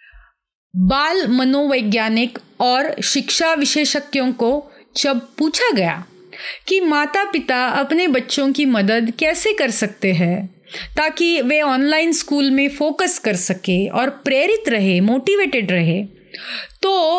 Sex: female